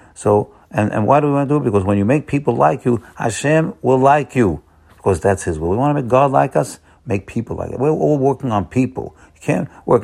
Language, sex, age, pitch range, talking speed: English, male, 60-79, 95-140 Hz, 265 wpm